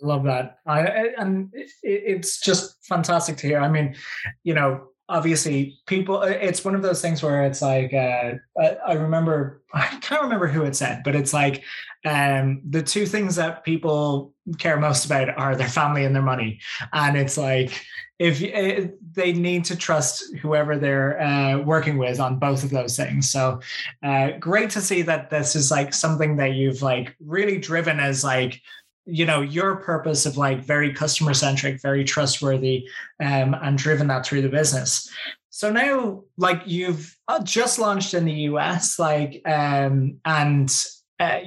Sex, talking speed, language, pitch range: male, 175 wpm, English, 140-175 Hz